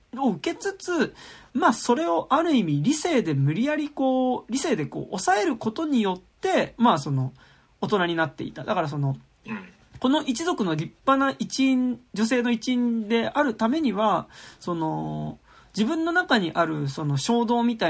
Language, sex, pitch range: Japanese, male, 155-250 Hz